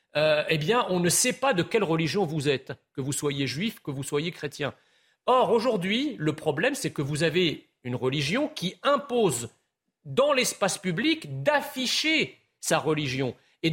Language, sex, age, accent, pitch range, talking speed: French, male, 40-59, French, 155-230 Hz, 170 wpm